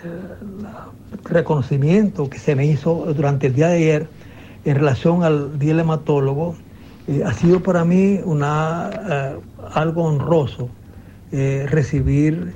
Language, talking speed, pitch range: Spanish, 135 wpm, 130-160 Hz